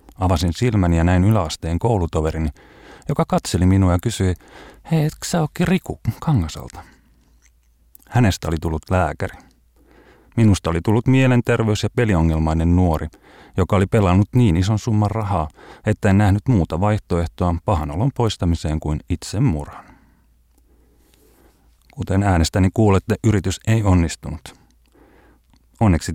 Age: 30-49